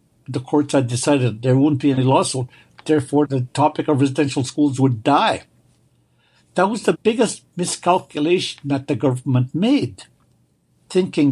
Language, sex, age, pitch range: English, male, 60-79, 135-180 Hz